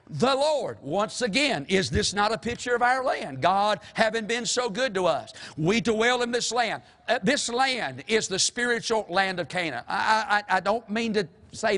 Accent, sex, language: American, male, English